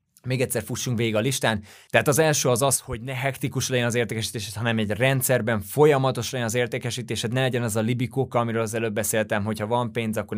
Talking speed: 215 wpm